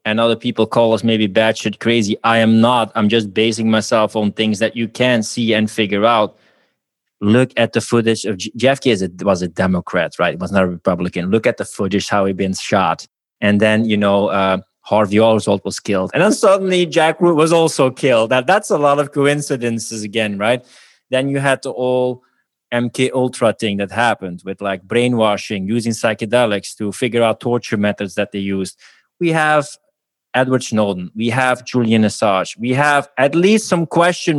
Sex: male